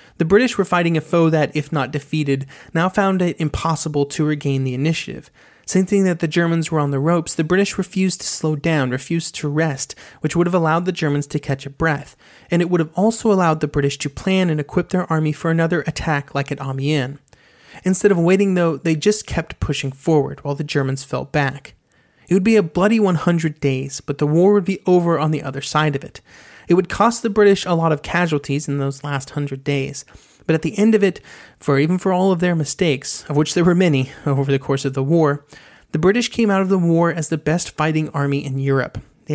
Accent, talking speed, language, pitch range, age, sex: American, 230 wpm, English, 145-180 Hz, 30-49, male